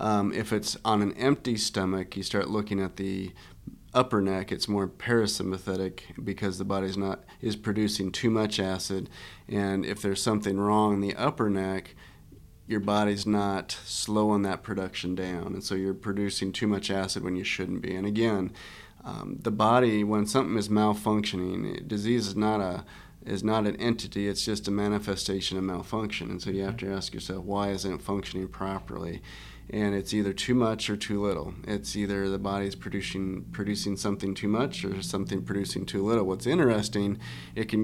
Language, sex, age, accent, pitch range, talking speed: English, male, 30-49, American, 95-110 Hz, 180 wpm